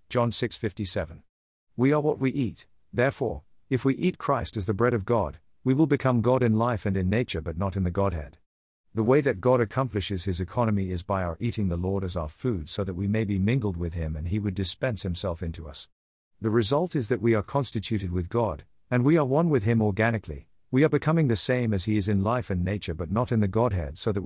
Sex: male